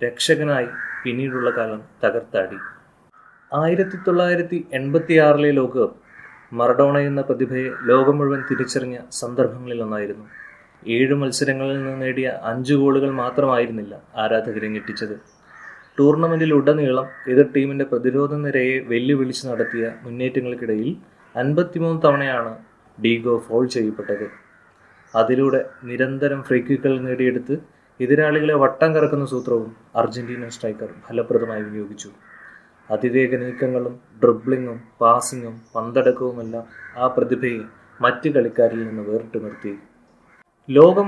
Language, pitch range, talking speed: Malayalam, 115-145 Hz, 95 wpm